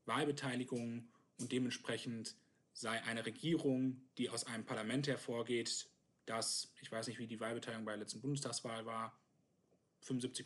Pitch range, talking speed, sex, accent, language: 115-135 Hz, 140 wpm, male, German, German